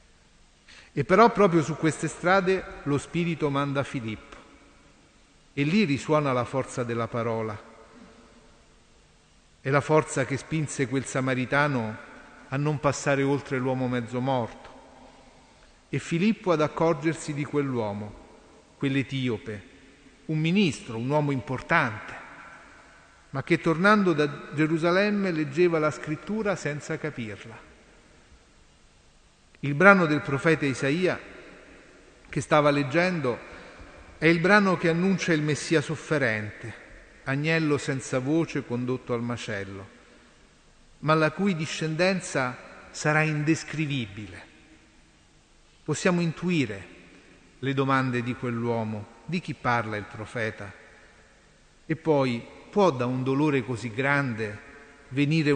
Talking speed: 110 wpm